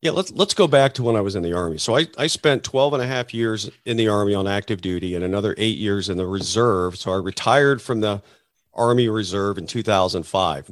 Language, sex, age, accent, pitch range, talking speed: English, male, 40-59, American, 110-145 Hz, 240 wpm